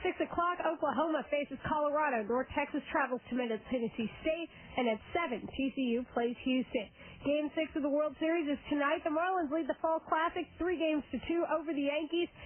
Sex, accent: female, American